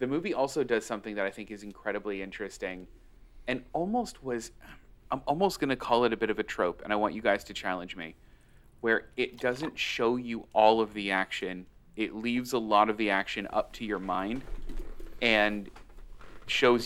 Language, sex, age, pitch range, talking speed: English, male, 30-49, 100-125 Hz, 195 wpm